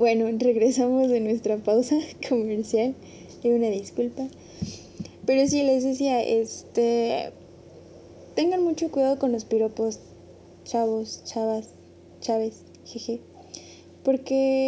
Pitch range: 215-255 Hz